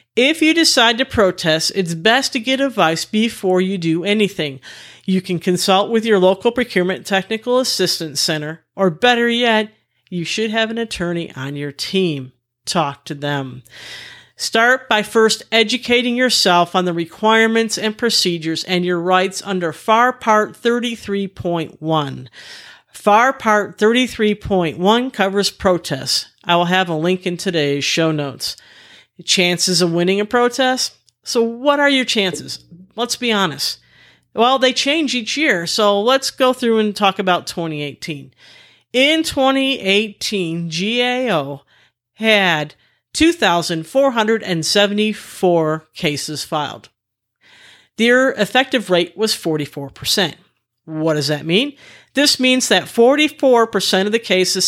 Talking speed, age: 130 wpm, 50-69